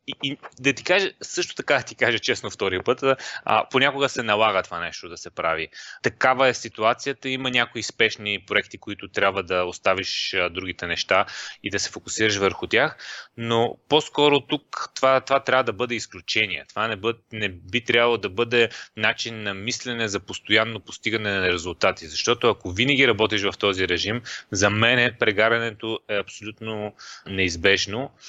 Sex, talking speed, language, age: male, 165 wpm, Bulgarian, 20-39